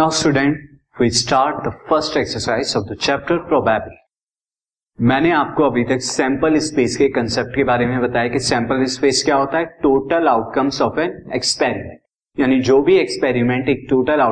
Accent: native